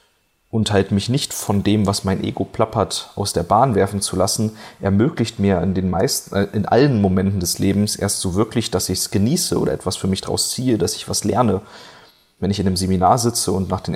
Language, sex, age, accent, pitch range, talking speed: German, male, 30-49, German, 100-120 Hz, 230 wpm